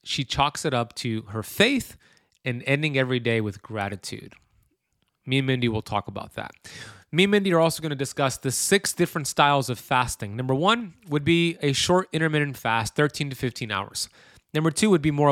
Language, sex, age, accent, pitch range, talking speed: English, male, 30-49, American, 125-150 Hz, 200 wpm